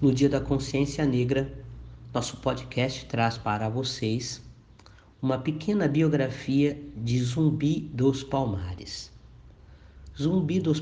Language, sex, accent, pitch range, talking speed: Portuguese, male, Brazilian, 105-140 Hz, 105 wpm